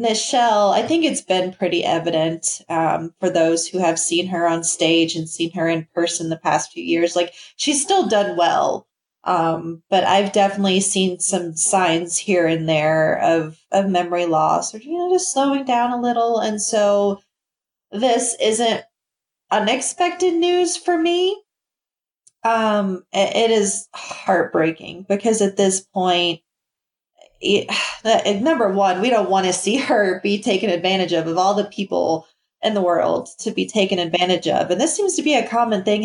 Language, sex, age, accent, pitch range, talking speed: English, female, 30-49, American, 175-230 Hz, 170 wpm